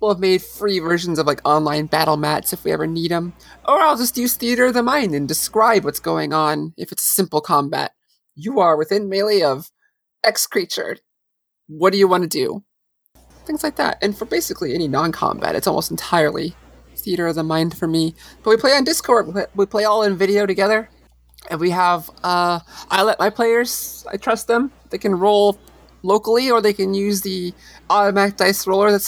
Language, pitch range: English, 160-220 Hz